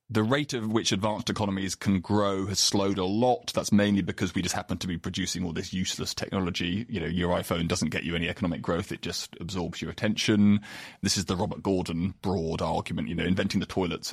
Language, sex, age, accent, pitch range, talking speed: English, male, 30-49, British, 90-110 Hz, 220 wpm